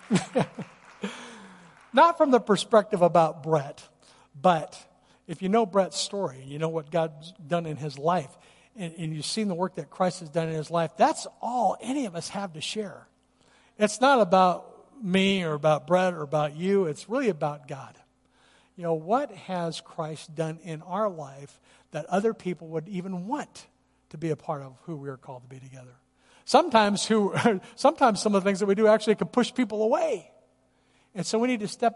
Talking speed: 195 wpm